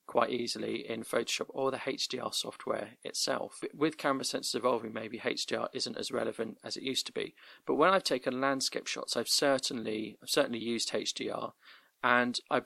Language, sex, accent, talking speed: English, male, British, 175 wpm